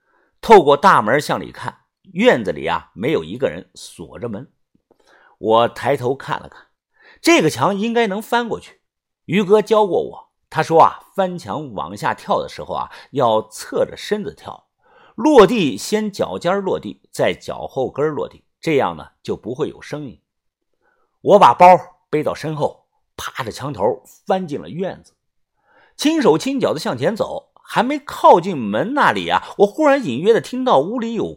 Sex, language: male, Chinese